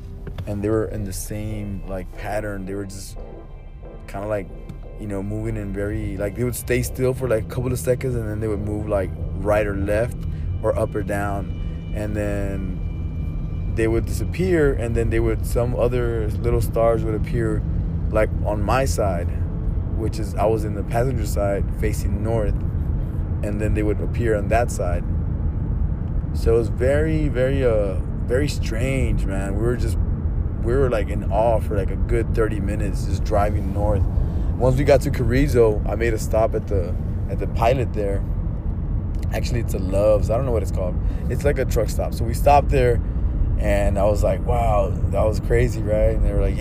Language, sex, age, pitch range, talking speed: English, male, 20-39, 85-110 Hz, 195 wpm